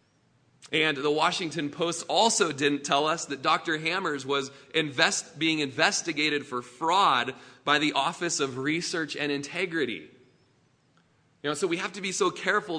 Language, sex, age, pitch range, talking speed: English, male, 20-39, 135-165 Hz, 155 wpm